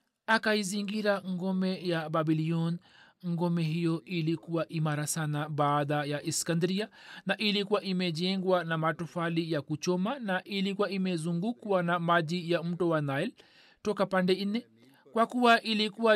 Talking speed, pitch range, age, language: 125 wpm, 160-200 Hz, 40-59, Swahili